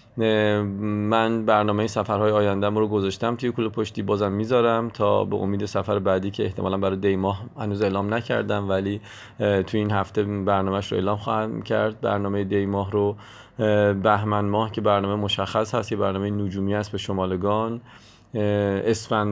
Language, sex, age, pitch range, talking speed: Persian, male, 30-49, 100-110 Hz, 150 wpm